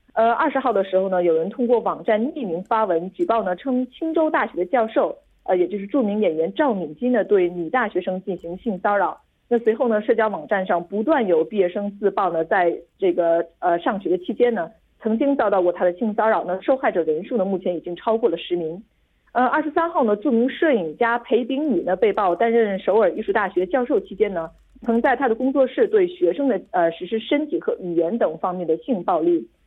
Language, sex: Korean, female